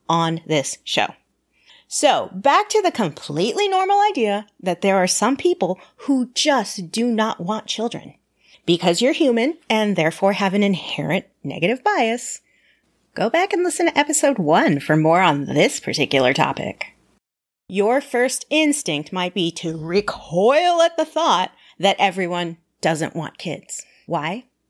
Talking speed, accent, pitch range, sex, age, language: 145 wpm, American, 190-305 Hz, female, 30-49, English